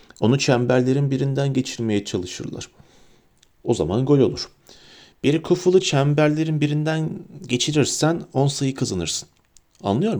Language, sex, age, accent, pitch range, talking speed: Turkish, male, 40-59, native, 120-170 Hz, 105 wpm